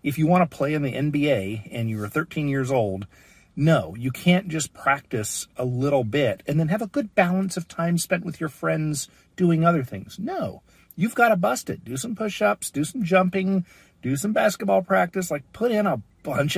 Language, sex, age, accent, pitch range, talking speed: English, male, 50-69, American, 120-175 Hz, 210 wpm